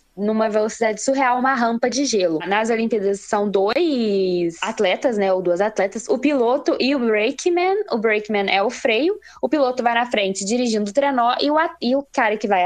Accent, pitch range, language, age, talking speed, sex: Brazilian, 210-260 Hz, Portuguese, 10-29, 190 wpm, female